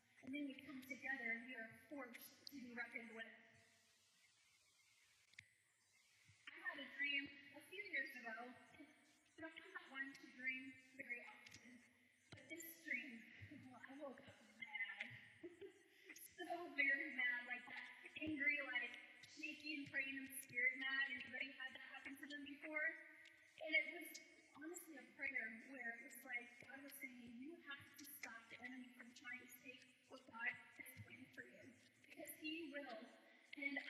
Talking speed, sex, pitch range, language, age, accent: 150 wpm, female, 255-310 Hz, English, 20-39, American